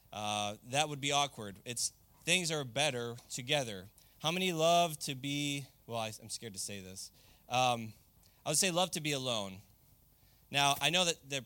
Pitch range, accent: 115-150 Hz, American